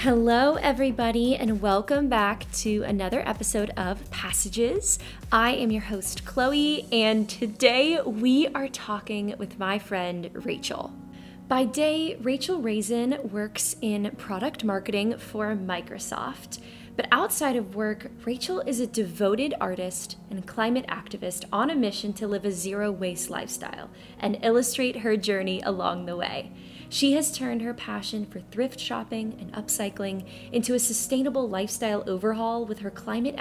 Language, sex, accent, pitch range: English, female, American, 200-240 Hz